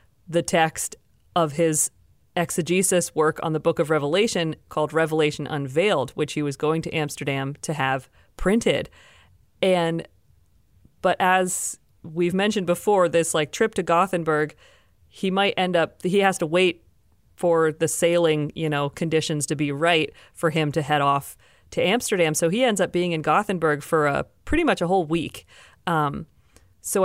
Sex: female